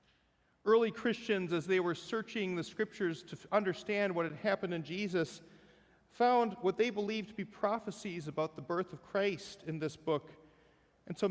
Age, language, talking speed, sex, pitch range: 40-59, English, 170 wpm, male, 160-205 Hz